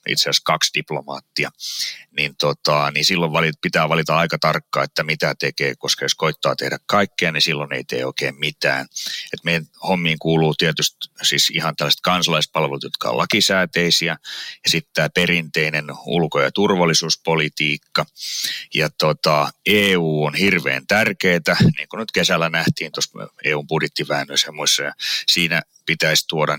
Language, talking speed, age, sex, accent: Finnish, 145 wpm, 30-49, male, native